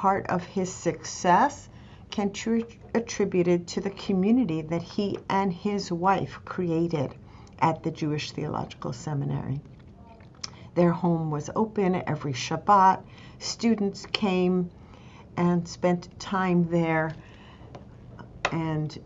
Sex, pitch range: female, 150-190 Hz